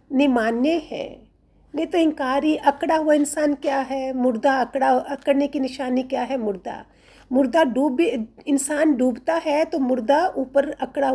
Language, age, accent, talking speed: Hindi, 50-69, native, 150 wpm